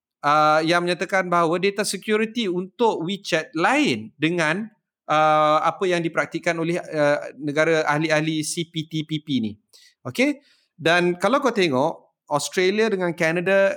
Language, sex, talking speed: Malay, male, 120 wpm